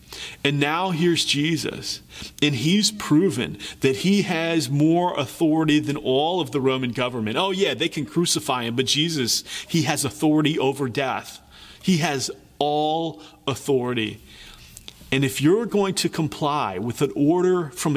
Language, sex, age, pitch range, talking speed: English, male, 30-49, 125-155 Hz, 150 wpm